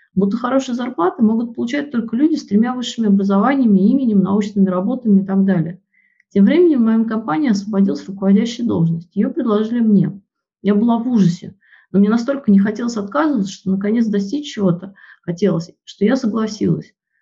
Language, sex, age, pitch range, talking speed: Russian, female, 30-49, 195-235 Hz, 160 wpm